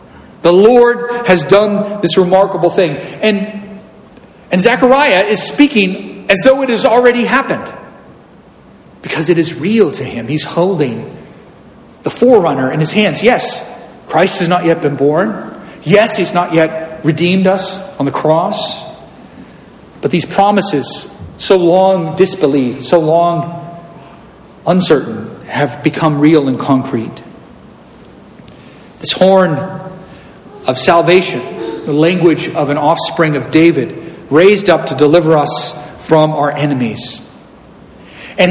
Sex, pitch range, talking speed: male, 150-195 Hz, 125 wpm